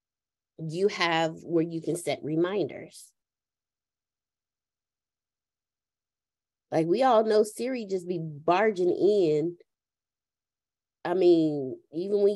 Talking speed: 95 wpm